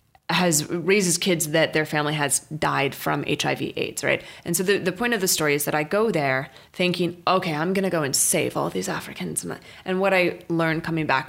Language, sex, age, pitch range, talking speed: English, female, 20-39, 155-195 Hz, 225 wpm